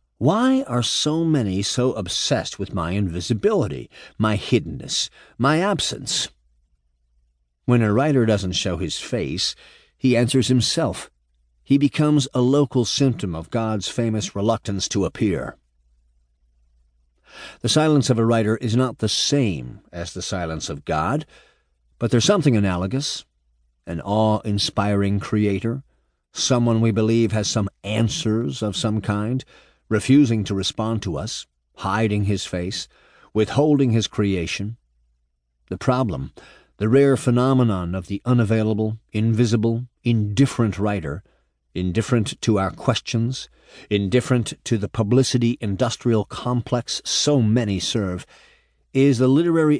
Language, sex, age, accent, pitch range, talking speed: English, male, 50-69, American, 90-125 Hz, 120 wpm